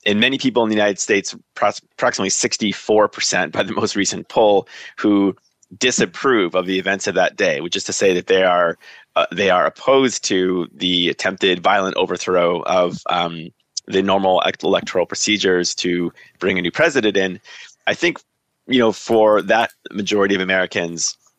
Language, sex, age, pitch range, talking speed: English, male, 30-49, 90-105 Hz, 165 wpm